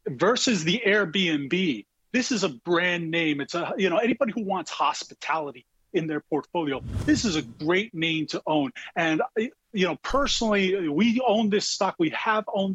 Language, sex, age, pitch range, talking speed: English, male, 30-49, 150-215 Hz, 175 wpm